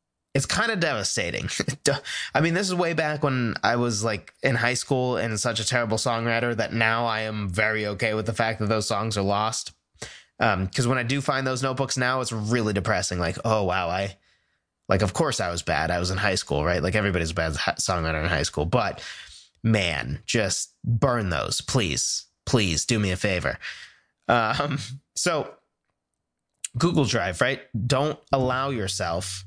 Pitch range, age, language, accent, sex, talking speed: 95-130 Hz, 20-39, English, American, male, 185 wpm